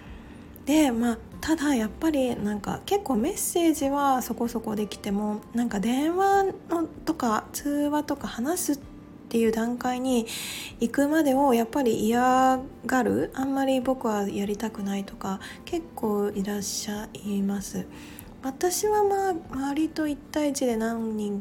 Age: 20-39